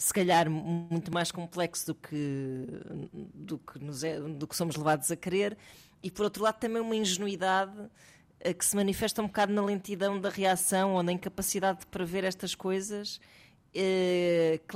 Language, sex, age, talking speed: Portuguese, female, 20-39, 165 wpm